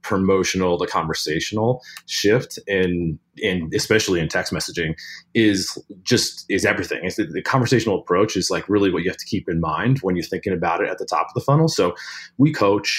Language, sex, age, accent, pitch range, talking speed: English, male, 30-49, American, 100-125 Hz, 205 wpm